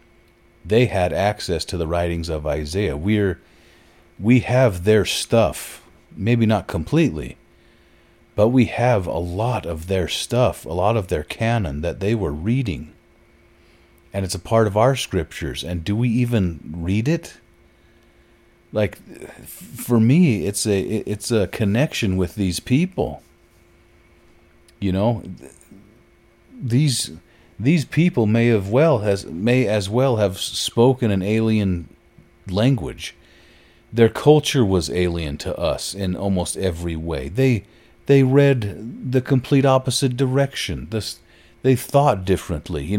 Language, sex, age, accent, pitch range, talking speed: English, male, 40-59, American, 90-120 Hz, 135 wpm